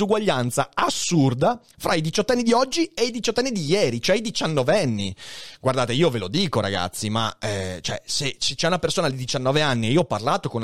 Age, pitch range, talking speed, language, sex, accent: 30-49, 120-180 Hz, 210 wpm, Italian, male, native